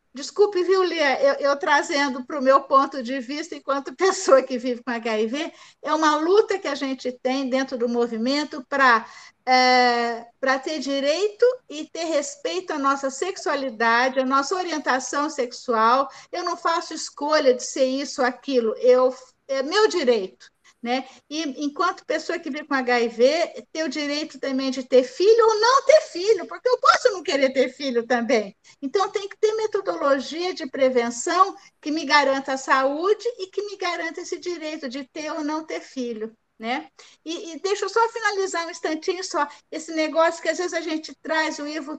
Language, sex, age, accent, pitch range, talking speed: Portuguese, female, 50-69, Brazilian, 265-345 Hz, 175 wpm